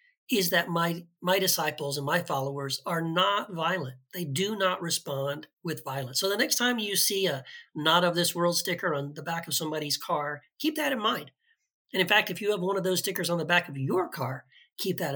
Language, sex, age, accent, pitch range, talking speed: English, male, 40-59, American, 145-185 Hz, 225 wpm